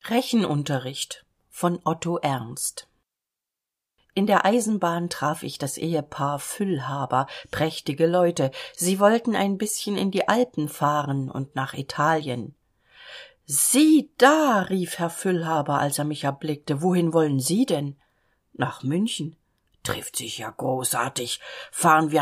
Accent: German